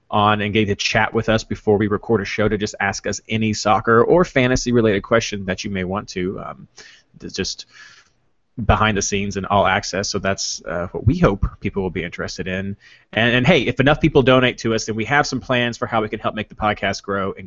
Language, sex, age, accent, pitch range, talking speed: English, male, 30-49, American, 100-125 Hz, 245 wpm